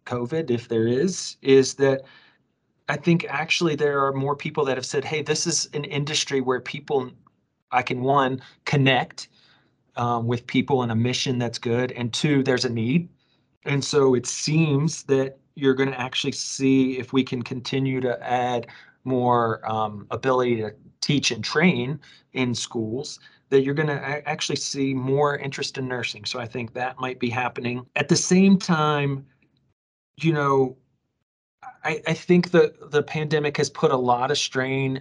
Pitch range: 120-140 Hz